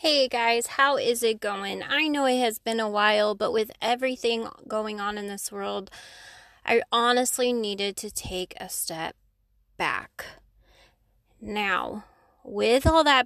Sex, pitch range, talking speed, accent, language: female, 205-245 Hz, 150 wpm, American, English